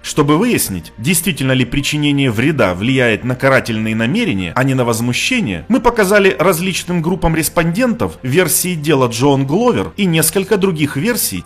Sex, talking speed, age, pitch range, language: male, 140 wpm, 30-49, 115-175 Hz, Russian